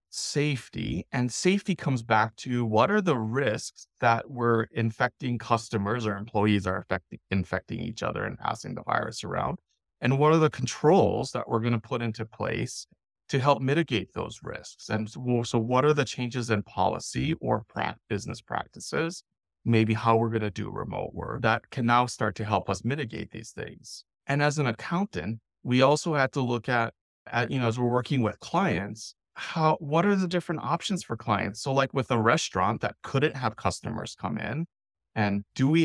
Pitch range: 105-130 Hz